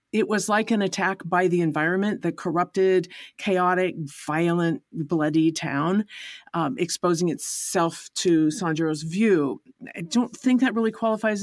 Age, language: 50-69, English